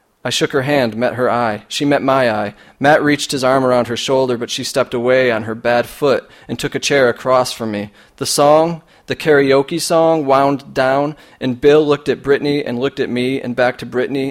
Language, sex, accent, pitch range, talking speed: English, male, American, 115-140 Hz, 220 wpm